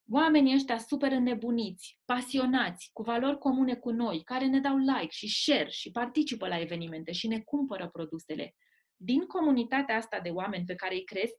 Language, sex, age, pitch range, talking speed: Romanian, female, 20-39, 210-275 Hz, 175 wpm